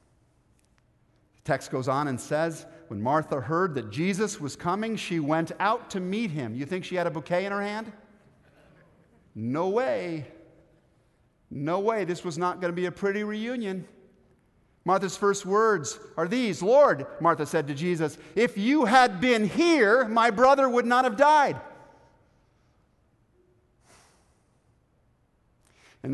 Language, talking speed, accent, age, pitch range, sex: English, 140 wpm, American, 50-69, 135-200 Hz, male